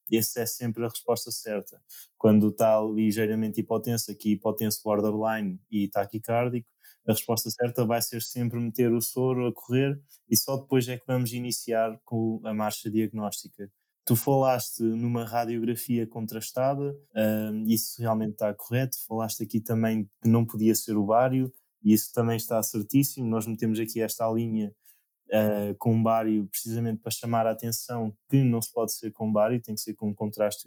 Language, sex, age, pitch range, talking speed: Portuguese, male, 20-39, 105-115 Hz, 165 wpm